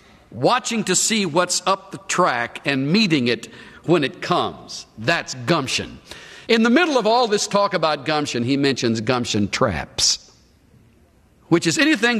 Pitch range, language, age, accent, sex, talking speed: 125-205 Hz, English, 50-69, American, male, 150 wpm